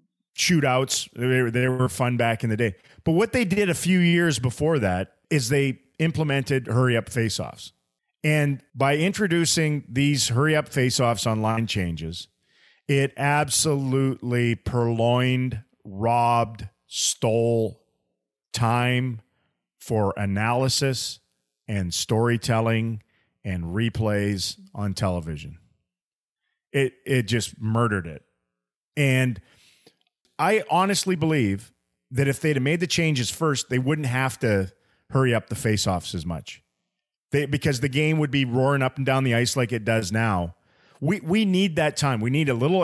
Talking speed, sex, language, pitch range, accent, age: 135 wpm, male, English, 110-145 Hz, American, 40-59